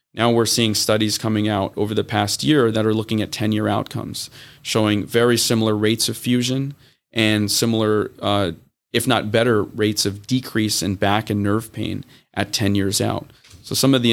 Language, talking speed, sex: English, 185 wpm, male